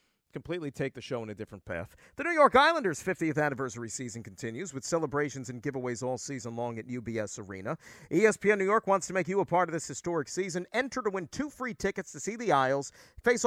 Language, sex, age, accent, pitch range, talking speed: English, male, 40-59, American, 130-190 Hz, 225 wpm